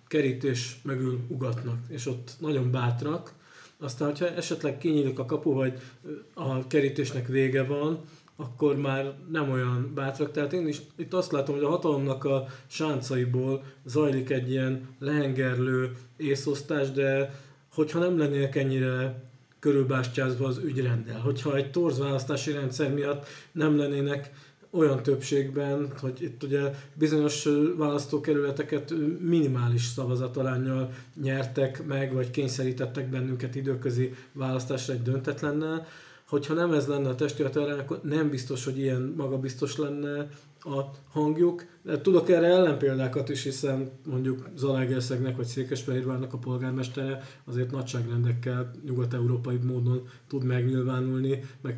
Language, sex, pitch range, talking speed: Hungarian, male, 130-150 Hz, 120 wpm